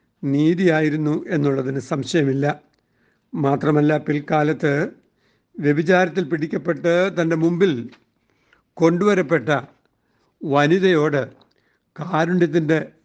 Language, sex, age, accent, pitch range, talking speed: Malayalam, male, 60-79, native, 150-175 Hz, 55 wpm